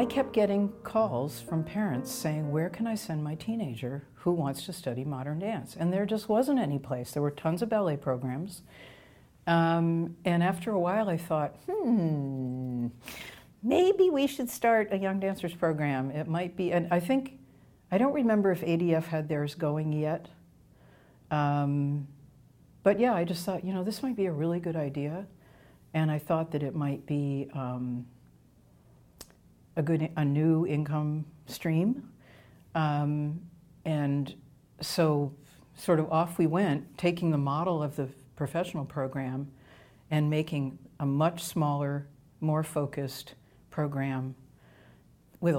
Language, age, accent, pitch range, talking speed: English, 60-79, American, 140-175 Hz, 150 wpm